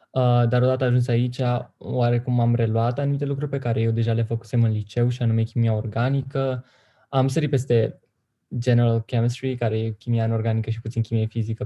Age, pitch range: 20-39, 115-125 Hz